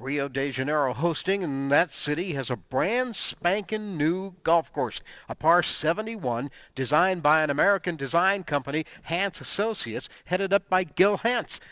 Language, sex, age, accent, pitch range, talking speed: English, male, 50-69, American, 135-185 Hz, 155 wpm